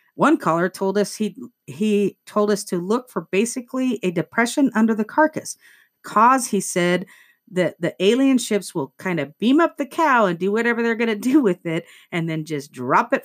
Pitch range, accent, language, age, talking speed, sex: 160-210 Hz, American, English, 40-59, 205 wpm, female